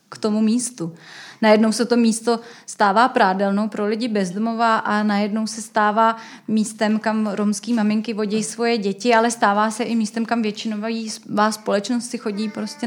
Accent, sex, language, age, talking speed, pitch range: native, female, Czech, 30-49, 160 wpm, 215-235 Hz